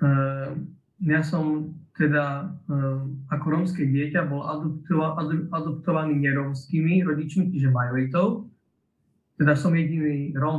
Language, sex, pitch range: Slovak, male, 145-170 Hz